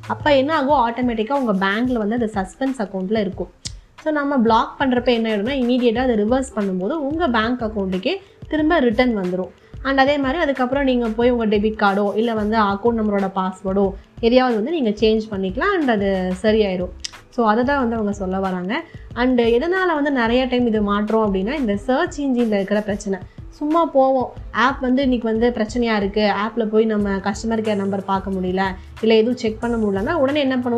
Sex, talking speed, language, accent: female, 180 wpm, Tamil, native